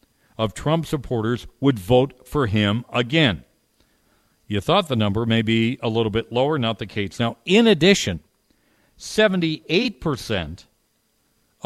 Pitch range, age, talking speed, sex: 110-140 Hz, 50-69, 130 wpm, male